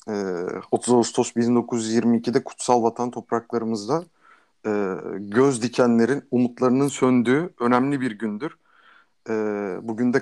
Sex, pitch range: male, 115-135 Hz